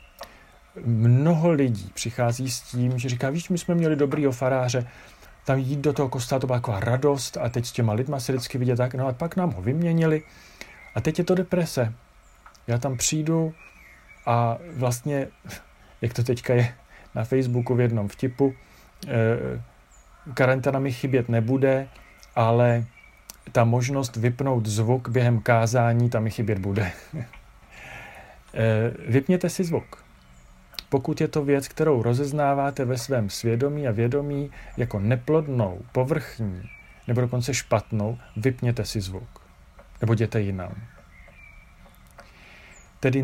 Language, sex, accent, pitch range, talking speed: Czech, male, native, 110-135 Hz, 135 wpm